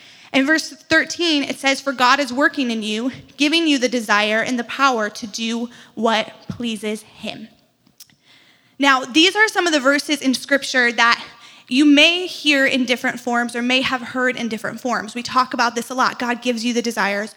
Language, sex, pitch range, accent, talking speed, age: English, female, 240-290 Hz, American, 195 wpm, 20-39